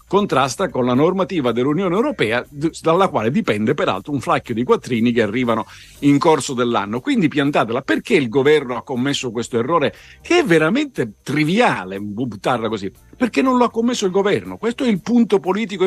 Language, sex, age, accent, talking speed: Italian, male, 50-69, native, 175 wpm